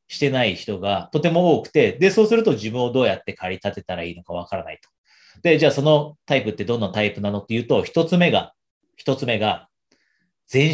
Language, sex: Japanese, male